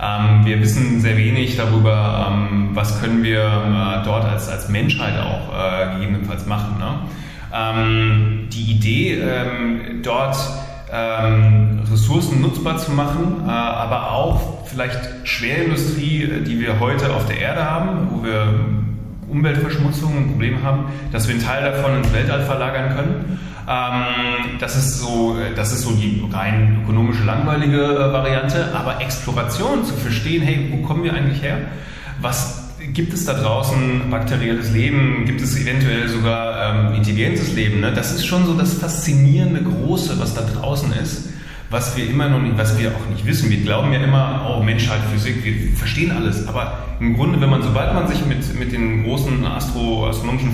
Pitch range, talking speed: 110-140 Hz, 165 wpm